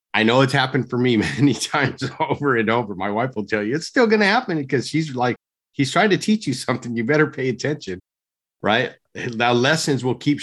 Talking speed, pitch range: 225 wpm, 95-125 Hz